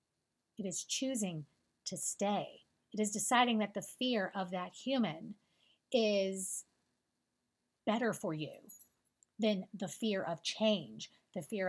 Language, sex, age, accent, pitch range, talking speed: English, female, 30-49, American, 190-265 Hz, 130 wpm